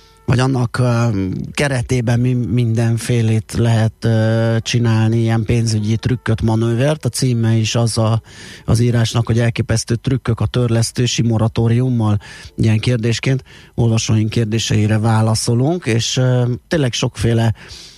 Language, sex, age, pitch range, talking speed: Hungarian, male, 30-49, 110-125 Hz, 100 wpm